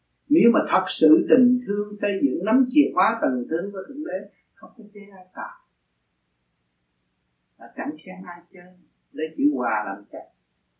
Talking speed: 170 wpm